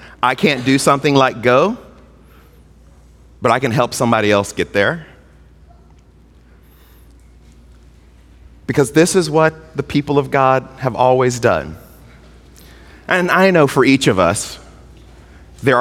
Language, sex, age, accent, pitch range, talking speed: English, male, 30-49, American, 75-125 Hz, 125 wpm